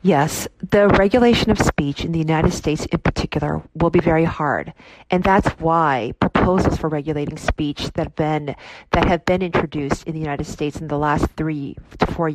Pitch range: 155-190 Hz